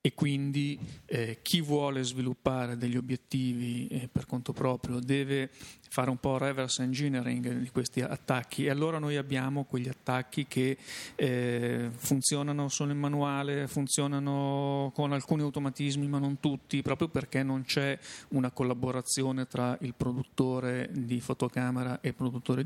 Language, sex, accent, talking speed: Italian, male, native, 145 wpm